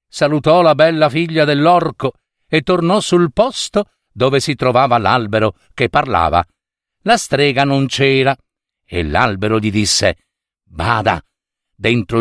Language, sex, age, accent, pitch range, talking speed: Italian, male, 50-69, native, 130-180 Hz, 125 wpm